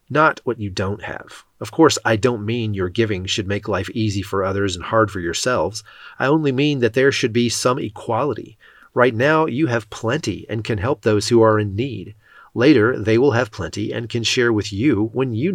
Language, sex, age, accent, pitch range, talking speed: English, male, 30-49, American, 105-125 Hz, 215 wpm